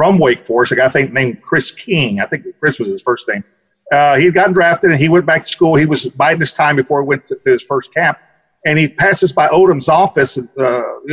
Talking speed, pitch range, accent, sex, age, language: 260 wpm, 145-180 Hz, American, male, 50-69, English